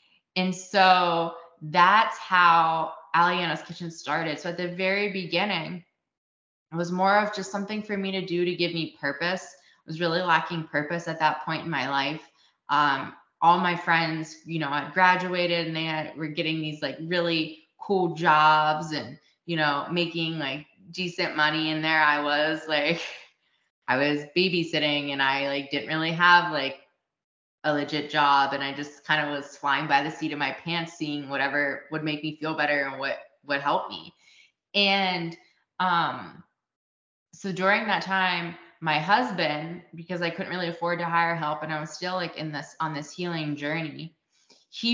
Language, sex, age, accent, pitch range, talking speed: English, female, 20-39, American, 150-175 Hz, 175 wpm